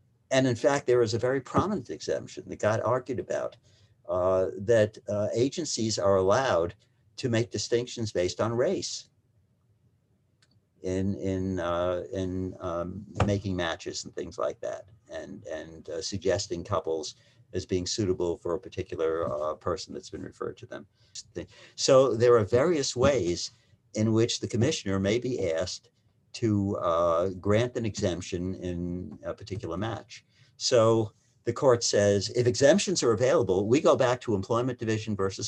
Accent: American